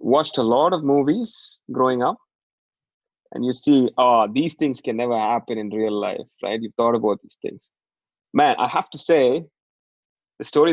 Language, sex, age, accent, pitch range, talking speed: English, male, 20-39, Indian, 105-125 Hz, 180 wpm